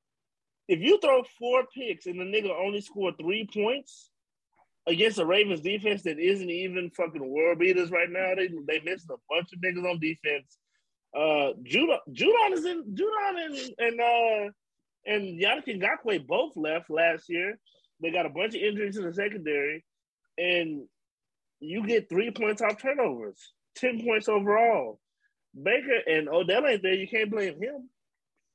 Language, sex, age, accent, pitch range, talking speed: English, male, 30-49, American, 165-220 Hz, 160 wpm